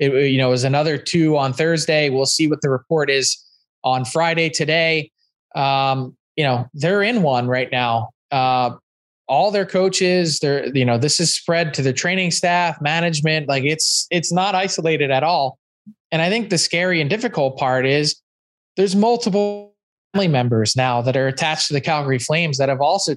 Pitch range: 135-170 Hz